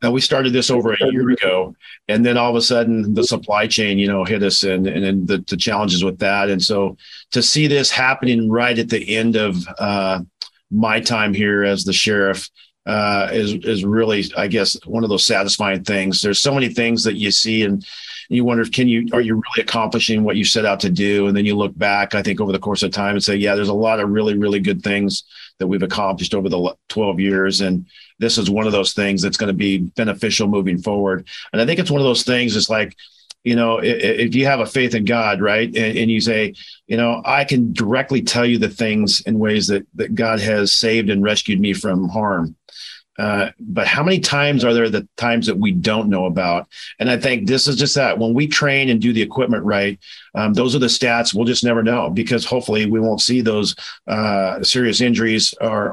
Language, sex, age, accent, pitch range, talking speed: English, male, 50-69, American, 100-120 Hz, 230 wpm